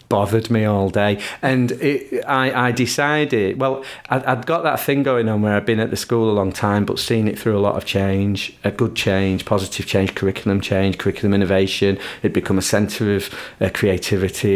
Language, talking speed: English, 200 wpm